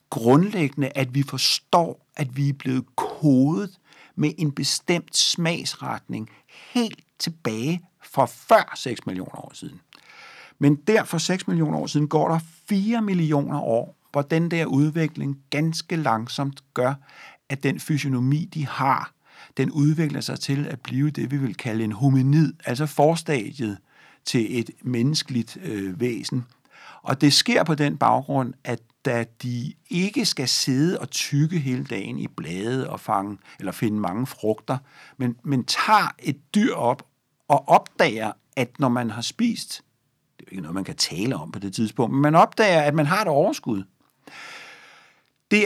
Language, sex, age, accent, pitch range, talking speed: Danish, male, 60-79, native, 130-165 Hz, 160 wpm